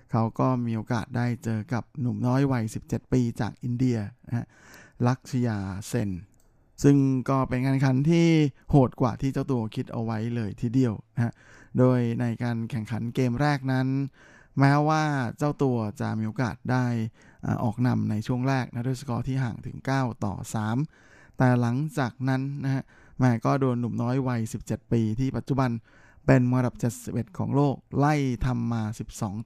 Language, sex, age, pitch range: Thai, male, 20-39, 115-135 Hz